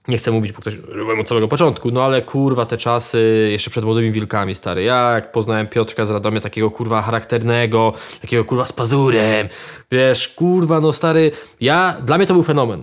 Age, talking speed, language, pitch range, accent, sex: 20-39, 195 wpm, Polish, 120-165 Hz, native, male